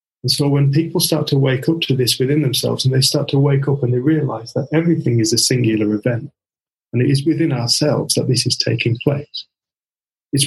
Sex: male